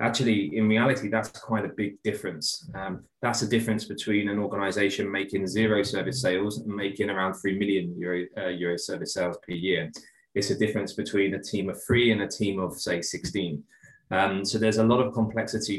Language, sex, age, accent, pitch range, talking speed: English, male, 20-39, British, 95-105 Hz, 195 wpm